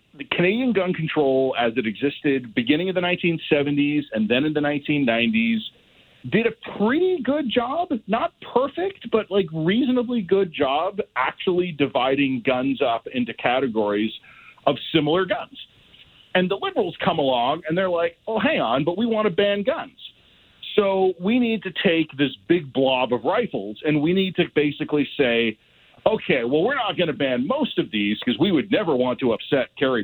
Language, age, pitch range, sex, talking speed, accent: English, 40-59, 135-205 Hz, male, 175 wpm, American